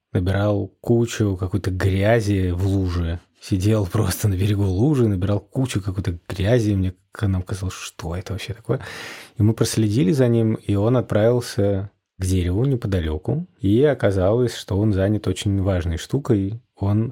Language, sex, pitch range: Russian, male, 95-110 Hz